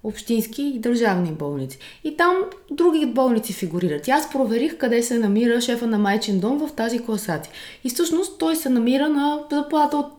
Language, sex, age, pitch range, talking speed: Bulgarian, female, 20-39, 175-240 Hz, 175 wpm